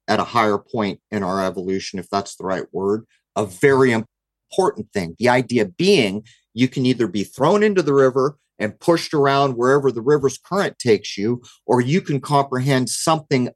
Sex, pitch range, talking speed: male, 105-140 Hz, 180 wpm